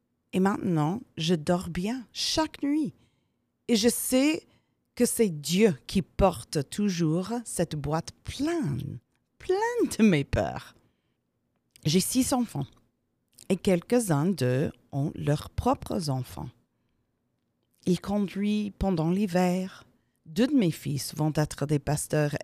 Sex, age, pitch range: female, 40-59, 155-240 Hz